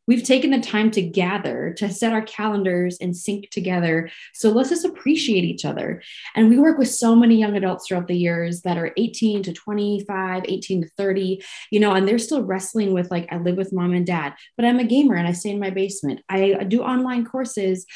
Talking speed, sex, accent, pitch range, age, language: 220 wpm, female, American, 180-215 Hz, 20-39, English